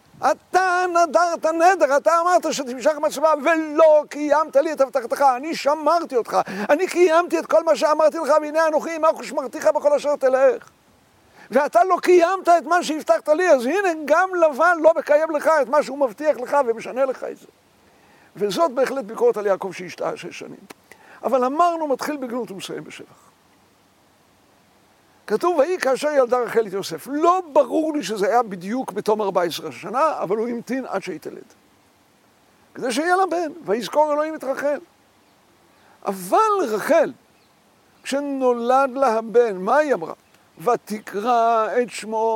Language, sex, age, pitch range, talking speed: Hebrew, male, 60-79, 230-325 Hz, 155 wpm